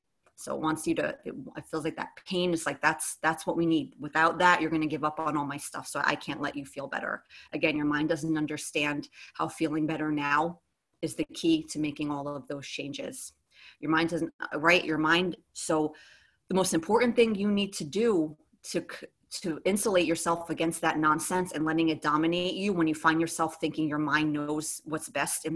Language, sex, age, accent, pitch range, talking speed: English, female, 30-49, American, 155-185 Hz, 215 wpm